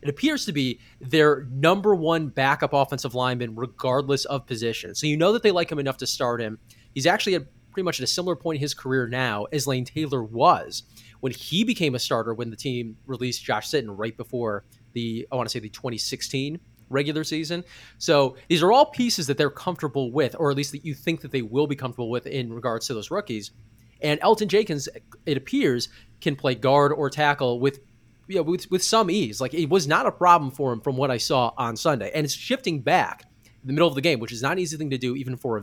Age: 20-39